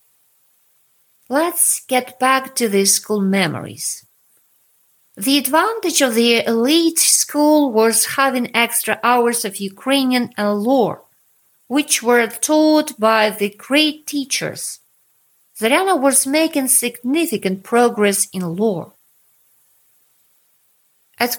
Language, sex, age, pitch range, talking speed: English, female, 50-69, 225-295 Hz, 100 wpm